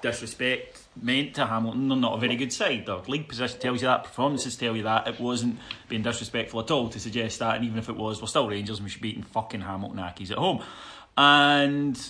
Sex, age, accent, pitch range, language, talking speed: male, 30-49, British, 110-135 Hz, English, 240 wpm